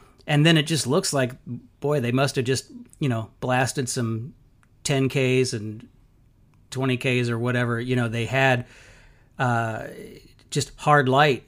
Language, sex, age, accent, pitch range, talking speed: English, male, 40-59, American, 120-135 Hz, 145 wpm